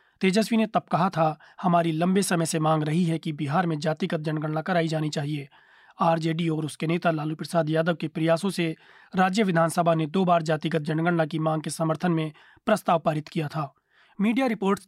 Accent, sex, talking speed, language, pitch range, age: native, male, 195 wpm, Hindi, 160-185 Hz, 30-49